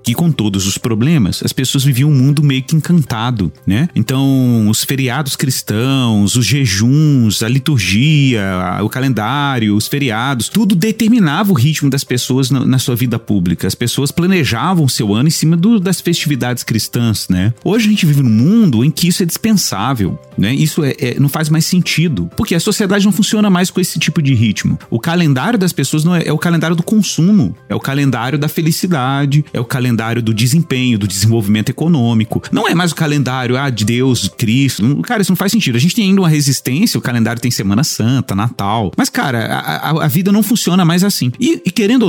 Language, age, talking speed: Portuguese, 40-59, 205 wpm